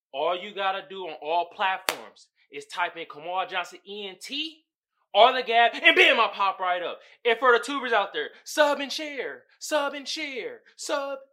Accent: American